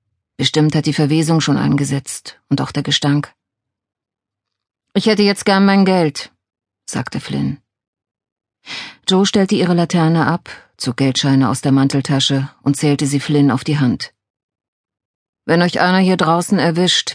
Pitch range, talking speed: 135-175 Hz, 145 wpm